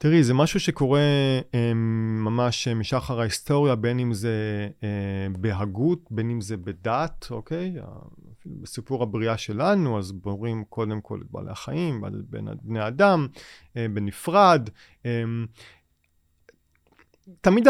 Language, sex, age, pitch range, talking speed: Hebrew, male, 30-49, 115-160 Hz, 100 wpm